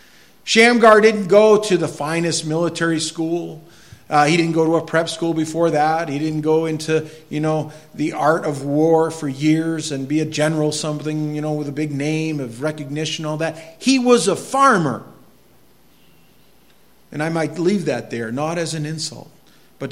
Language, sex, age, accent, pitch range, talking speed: English, male, 50-69, American, 125-155 Hz, 180 wpm